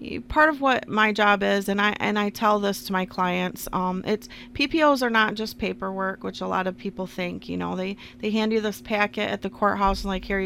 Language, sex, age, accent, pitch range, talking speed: English, female, 30-49, American, 175-200 Hz, 240 wpm